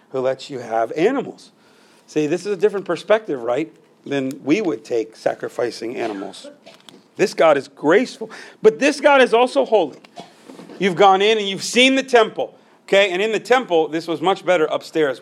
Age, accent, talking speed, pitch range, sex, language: 40-59, American, 180 wpm, 150-205 Hz, male, English